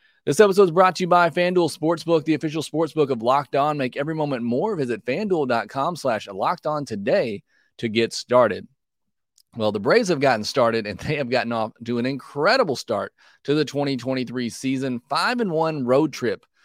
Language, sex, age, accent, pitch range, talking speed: English, male, 30-49, American, 115-150 Hz, 185 wpm